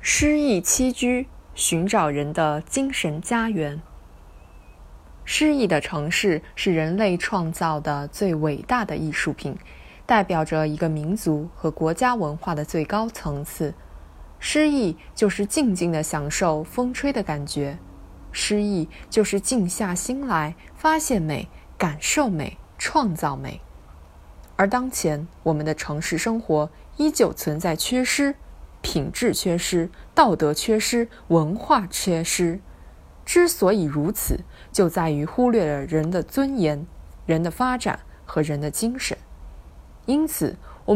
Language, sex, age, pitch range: Chinese, female, 20-39, 150-230 Hz